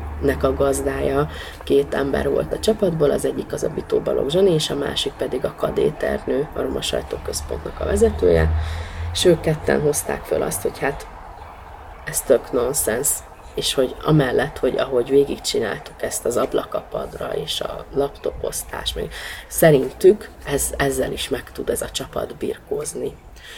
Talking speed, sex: 145 wpm, female